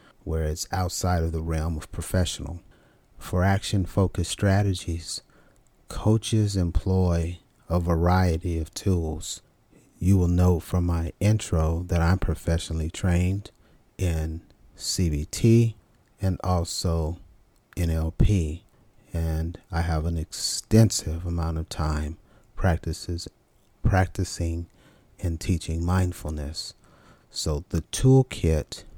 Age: 40-59